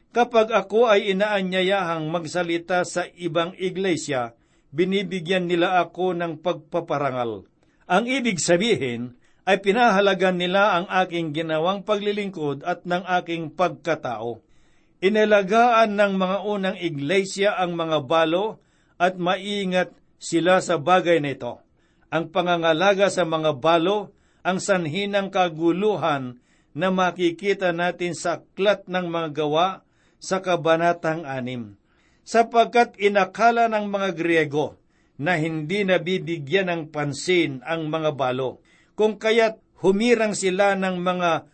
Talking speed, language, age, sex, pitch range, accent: 115 wpm, Filipino, 60-79, male, 165-195 Hz, native